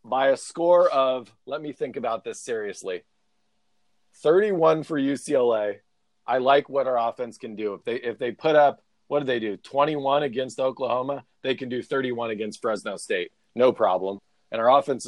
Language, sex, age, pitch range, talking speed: English, male, 40-59, 115-140 Hz, 180 wpm